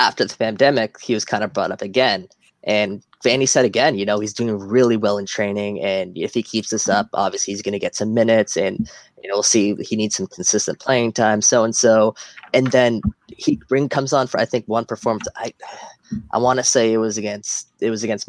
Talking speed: 225 wpm